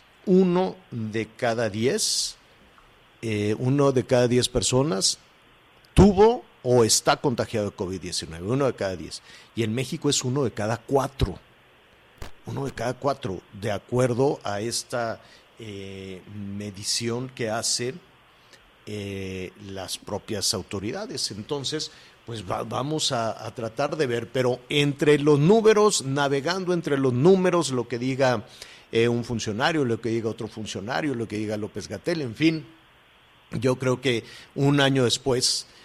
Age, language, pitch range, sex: 50-69, Spanish, 115-140 Hz, male